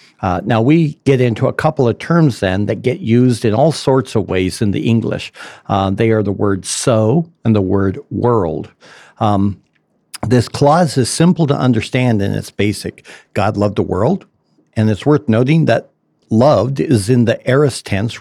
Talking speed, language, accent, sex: 185 wpm, English, American, male